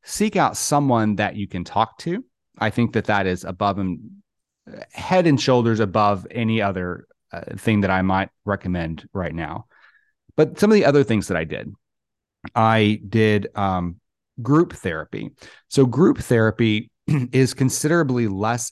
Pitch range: 100-120 Hz